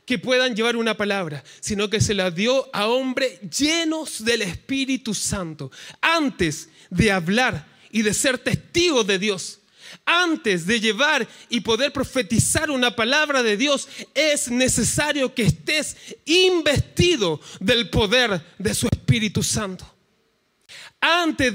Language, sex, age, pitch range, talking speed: Spanish, male, 30-49, 220-295 Hz, 130 wpm